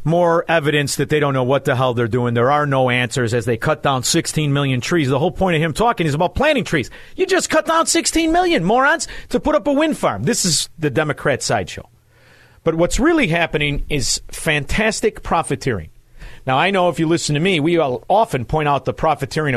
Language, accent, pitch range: English, American, 130-180 Hz